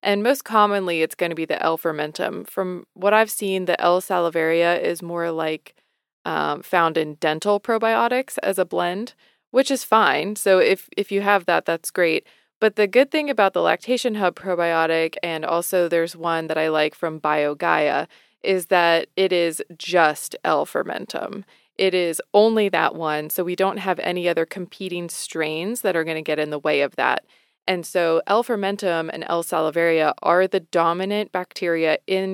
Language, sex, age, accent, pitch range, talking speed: English, female, 20-39, American, 165-200 Hz, 175 wpm